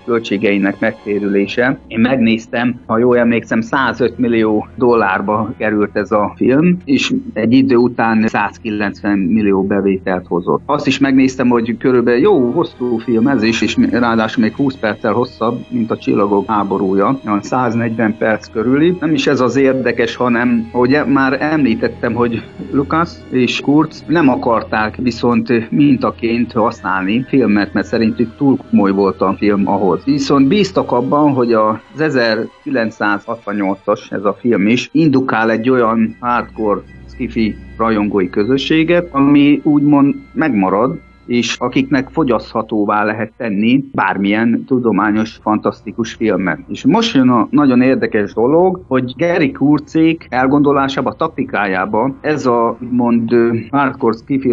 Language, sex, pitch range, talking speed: Hungarian, male, 110-135 Hz, 130 wpm